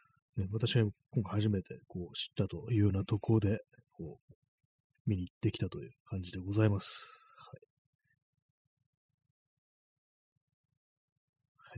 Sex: male